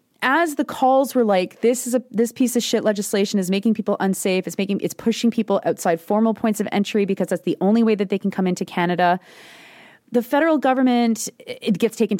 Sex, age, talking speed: female, 30-49, 215 wpm